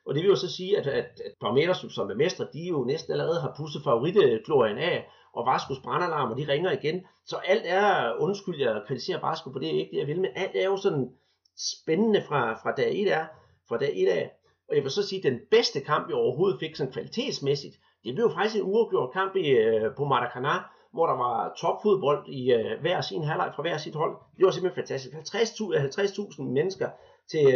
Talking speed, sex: 215 wpm, male